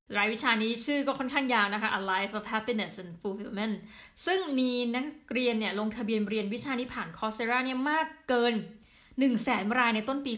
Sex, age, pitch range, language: female, 20-39, 195-240 Hz, Thai